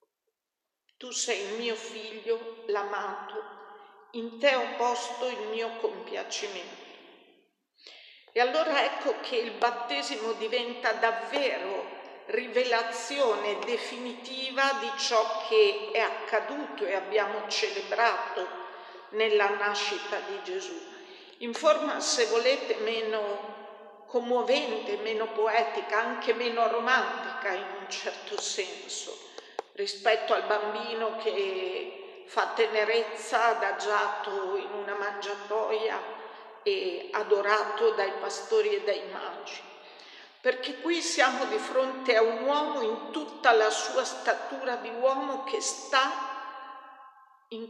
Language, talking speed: Italian, 105 wpm